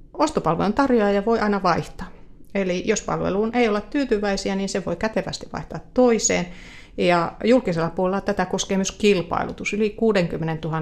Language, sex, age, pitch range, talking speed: Finnish, female, 30-49, 175-225 Hz, 145 wpm